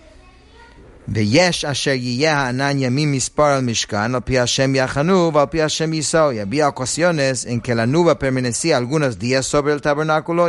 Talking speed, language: 105 wpm, English